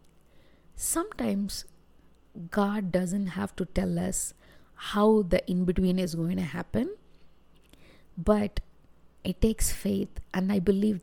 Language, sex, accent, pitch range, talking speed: English, female, Indian, 180-210 Hz, 115 wpm